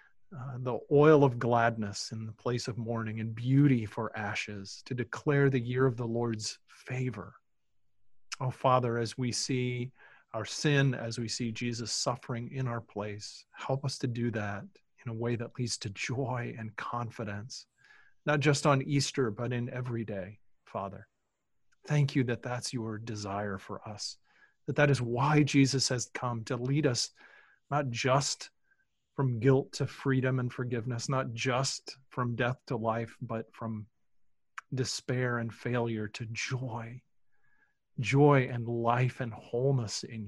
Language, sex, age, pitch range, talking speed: English, male, 40-59, 110-135 Hz, 155 wpm